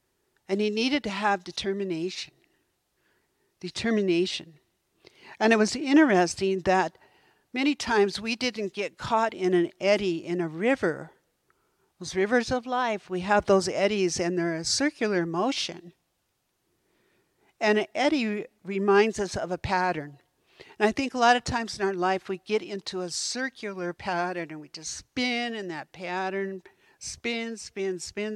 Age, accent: 60-79, American